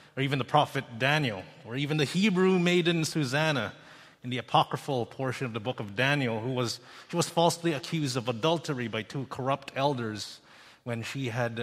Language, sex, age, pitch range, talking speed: English, male, 30-49, 130-165 Hz, 180 wpm